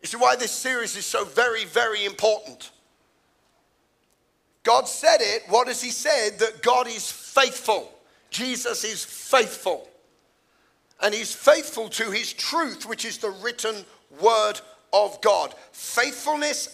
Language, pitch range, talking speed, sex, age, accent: English, 190-245 Hz, 135 wpm, male, 50-69, British